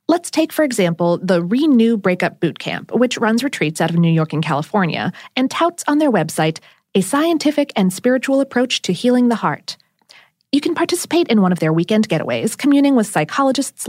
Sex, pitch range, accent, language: female, 180-270 Hz, American, English